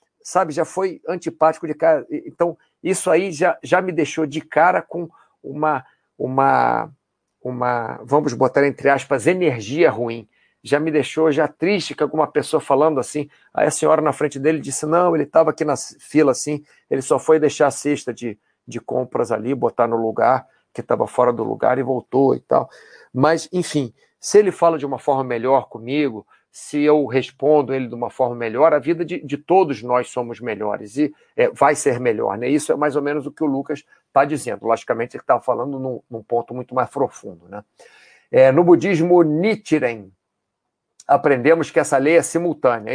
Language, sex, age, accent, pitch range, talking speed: Portuguese, male, 50-69, Brazilian, 130-160 Hz, 185 wpm